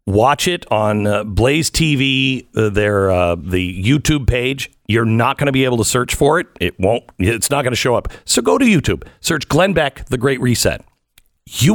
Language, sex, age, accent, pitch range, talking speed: English, male, 50-69, American, 105-140 Hz, 210 wpm